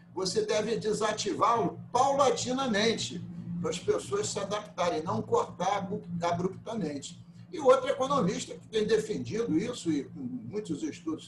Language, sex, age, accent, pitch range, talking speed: Portuguese, male, 60-79, Brazilian, 160-245 Hz, 130 wpm